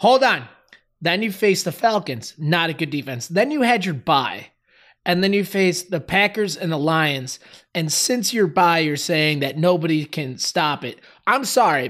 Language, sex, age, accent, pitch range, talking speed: English, male, 20-39, American, 150-195 Hz, 190 wpm